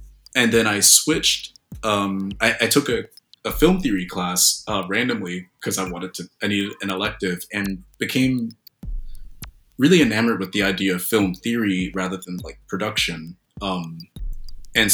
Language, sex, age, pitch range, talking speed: English, male, 20-39, 90-115 Hz, 155 wpm